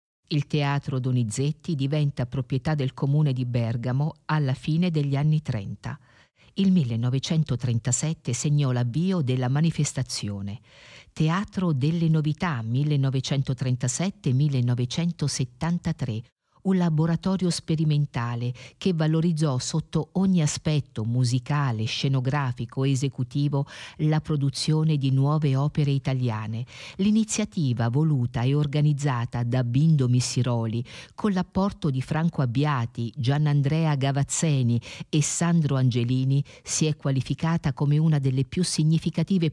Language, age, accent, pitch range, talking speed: Italian, 50-69, native, 130-160 Hz, 100 wpm